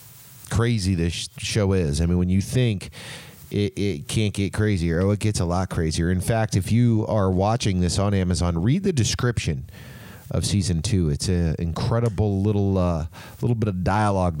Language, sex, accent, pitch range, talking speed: English, male, American, 85-115 Hz, 185 wpm